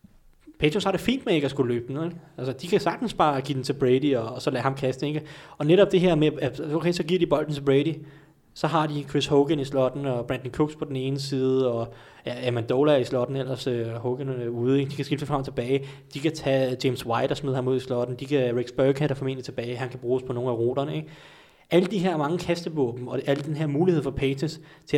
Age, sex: 20-39, male